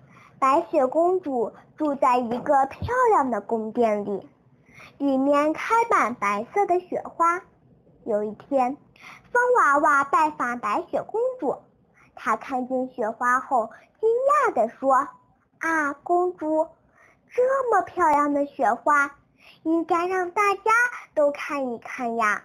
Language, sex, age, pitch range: Chinese, female, 10-29, 240-365 Hz